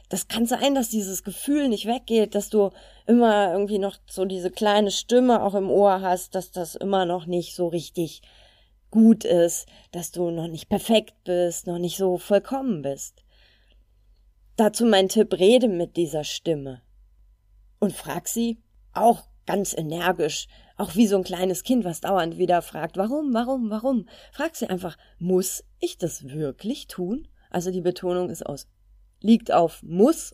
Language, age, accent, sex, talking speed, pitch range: German, 30-49, German, female, 165 wpm, 155-210 Hz